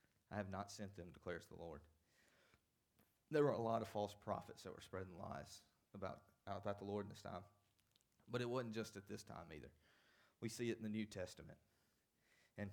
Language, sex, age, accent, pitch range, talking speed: English, male, 30-49, American, 100-115 Hz, 200 wpm